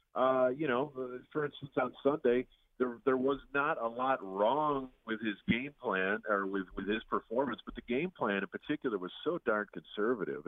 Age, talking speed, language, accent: 40-59, 190 wpm, English, American